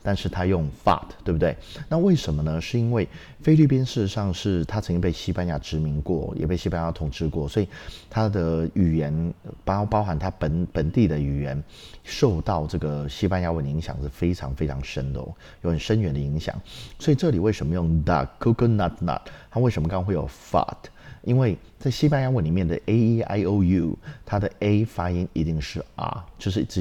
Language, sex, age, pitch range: Chinese, male, 30-49, 75-105 Hz